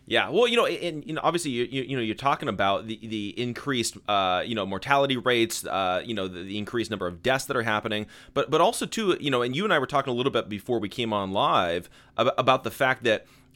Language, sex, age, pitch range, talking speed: English, male, 30-49, 110-155 Hz, 265 wpm